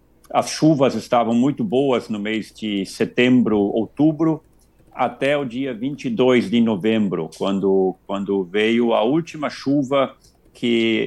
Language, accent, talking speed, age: Portuguese, Brazilian, 125 wpm, 50-69